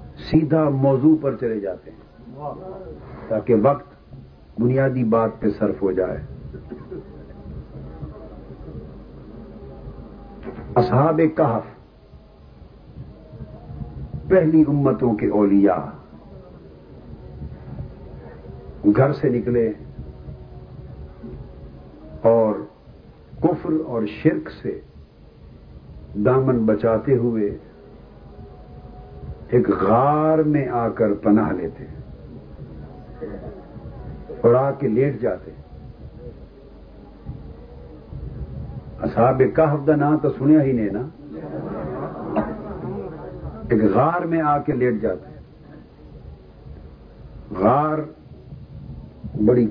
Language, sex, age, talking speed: Urdu, male, 60-79, 75 wpm